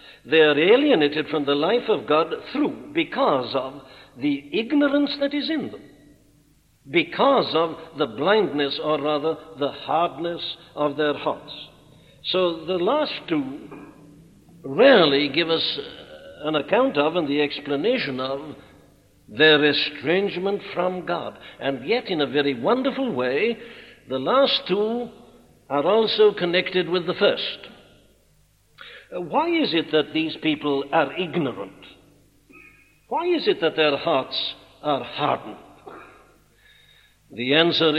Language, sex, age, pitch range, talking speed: English, male, 60-79, 145-215 Hz, 125 wpm